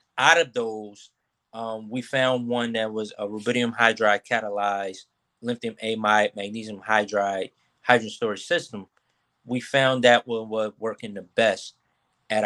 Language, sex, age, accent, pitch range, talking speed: English, male, 20-39, American, 110-125 Hz, 145 wpm